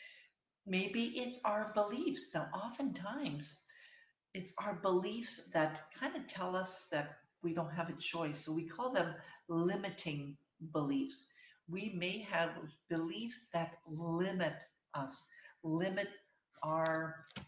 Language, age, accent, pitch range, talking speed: English, 60-79, American, 155-190 Hz, 120 wpm